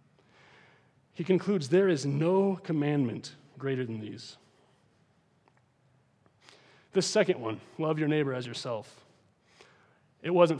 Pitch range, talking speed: 125-165 Hz, 110 wpm